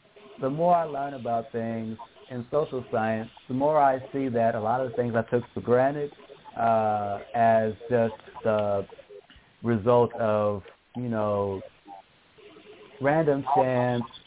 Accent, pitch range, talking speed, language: American, 110-125 Hz, 135 wpm, English